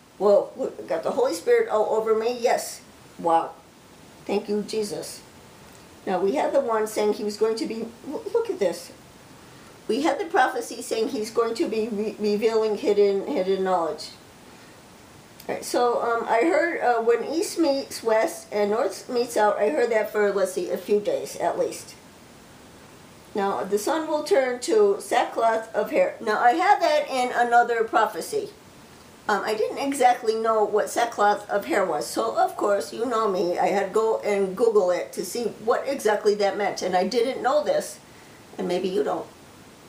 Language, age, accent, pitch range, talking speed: English, 50-69, American, 205-280 Hz, 180 wpm